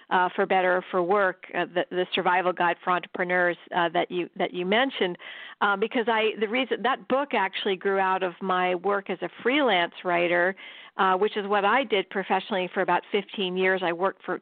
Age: 50-69